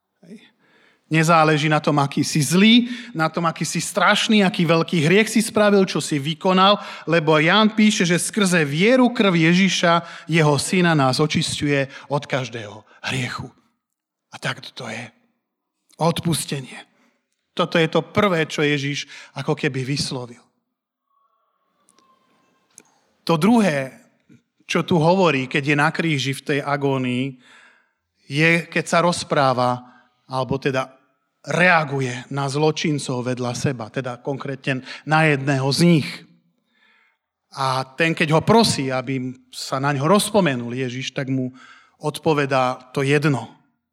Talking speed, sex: 125 wpm, male